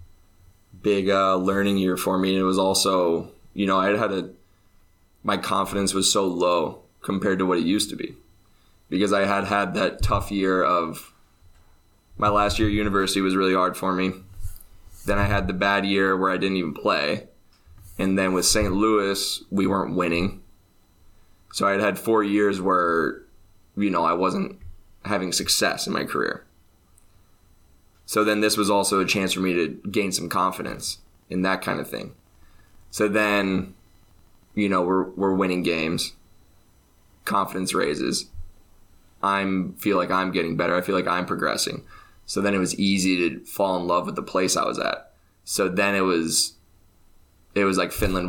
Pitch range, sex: 90-100 Hz, male